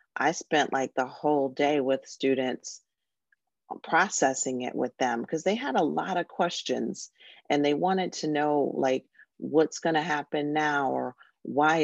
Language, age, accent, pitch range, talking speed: English, 40-59, American, 135-155 Hz, 160 wpm